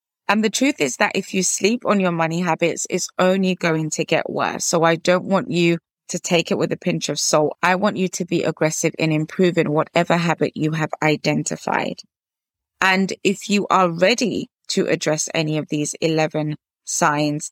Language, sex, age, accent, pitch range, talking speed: English, female, 20-39, British, 155-185 Hz, 190 wpm